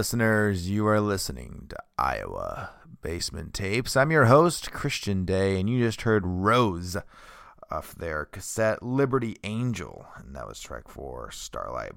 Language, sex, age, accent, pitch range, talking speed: English, male, 30-49, American, 90-120 Hz, 145 wpm